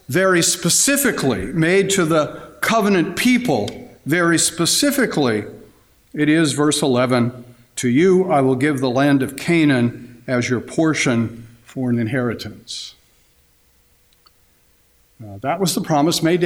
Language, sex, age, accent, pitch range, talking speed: English, male, 50-69, American, 120-175 Hz, 120 wpm